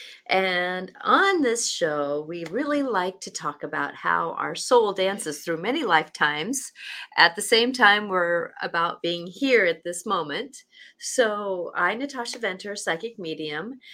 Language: English